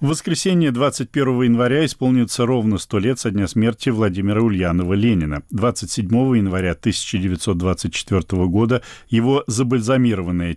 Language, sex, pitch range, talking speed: Russian, male, 95-125 Hz, 115 wpm